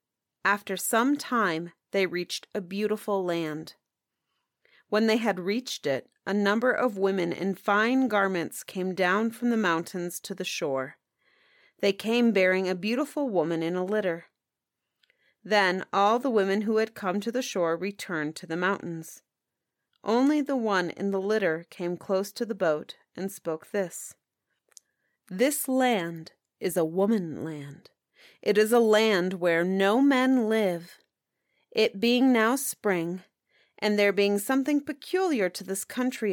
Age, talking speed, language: 30-49, 150 wpm, English